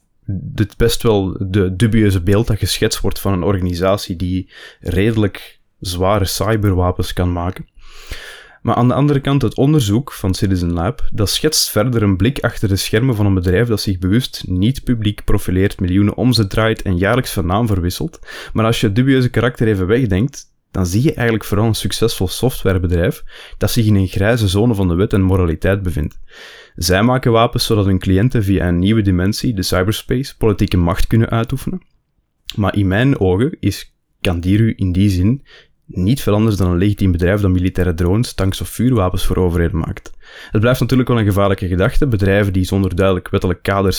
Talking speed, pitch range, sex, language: 185 wpm, 95-115 Hz, male, Dutch